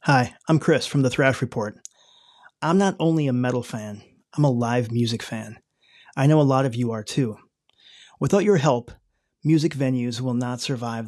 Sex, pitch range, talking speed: male, 125-160 Hz, 185 wpm